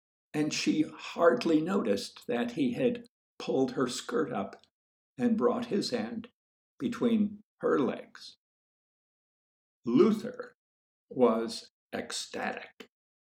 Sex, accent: male, American